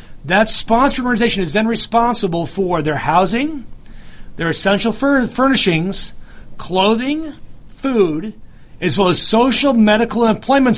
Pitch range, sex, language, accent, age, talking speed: 165-220 Hz, male, English, American, 40-59, 115 wpm